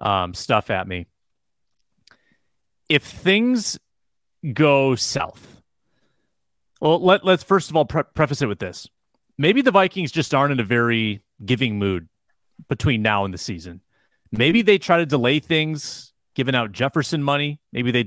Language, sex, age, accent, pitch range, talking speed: English, male, 30-49, American, 110-155 Hz, 155 wpm